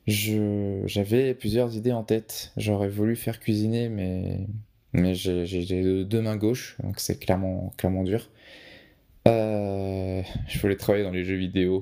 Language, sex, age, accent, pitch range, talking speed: French, male, 20-39, French, 95-110 Hz, 150 wpm